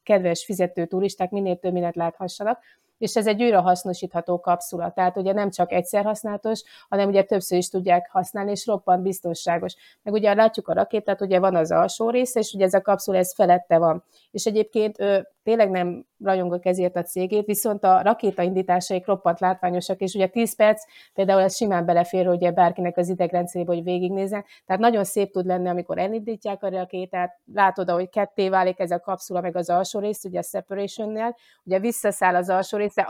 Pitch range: 180-210 Hz